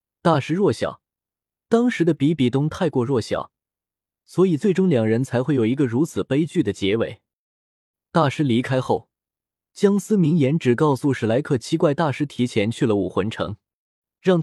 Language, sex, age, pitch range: Chinese, male, 20-39, 120-170 Hz